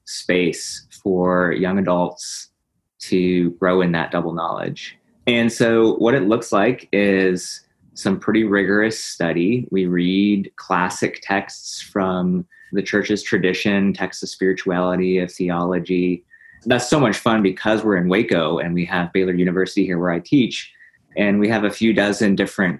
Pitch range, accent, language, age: 90-105 Hz, American, English, 20-39